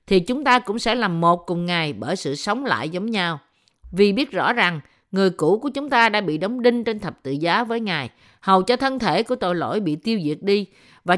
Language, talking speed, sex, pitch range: Vietnamese, 245 wpm, female, 175-245 Hz